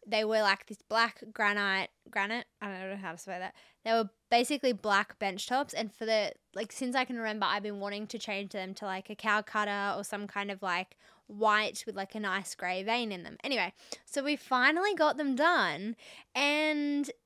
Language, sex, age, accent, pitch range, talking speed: English, female, 20-39, Australian, 205-255 Hz, 210 wpm